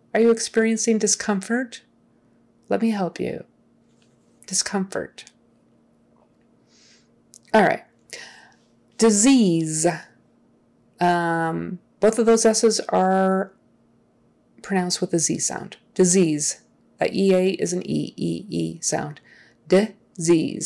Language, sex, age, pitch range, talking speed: English, female, 30-49, 160-210 Hz, 90 wpm